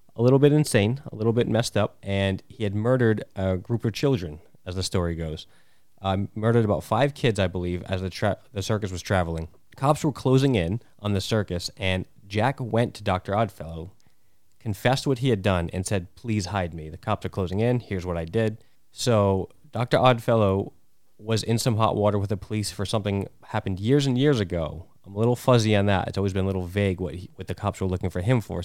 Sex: male